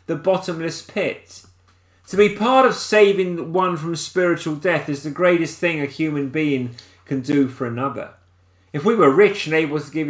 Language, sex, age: English, male, 30-49